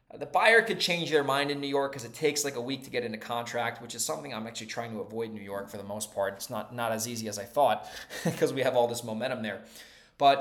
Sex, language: male, English